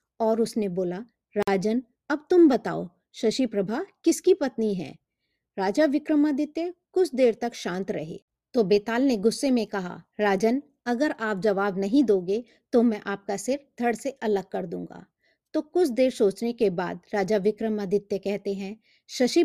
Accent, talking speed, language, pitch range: native, 155 wpm, Hindi, 200-265 Hz